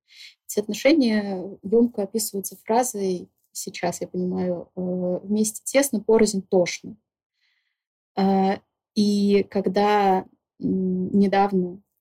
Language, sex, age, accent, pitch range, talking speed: Russian, female, 20-39, native, 180-215 Hz, 75 wpm